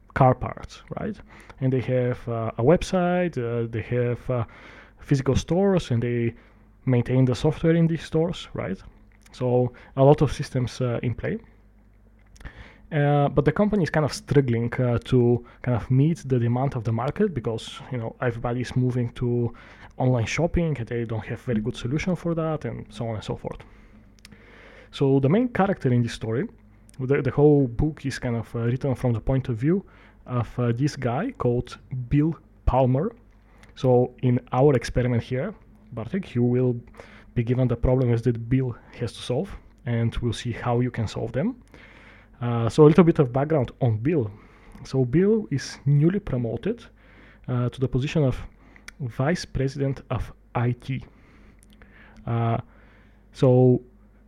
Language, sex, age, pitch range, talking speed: English, male, 20-39, 115-140 Hz, 170 wpm